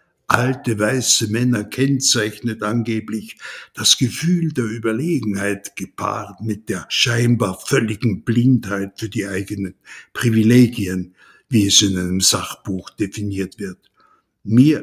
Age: 60-79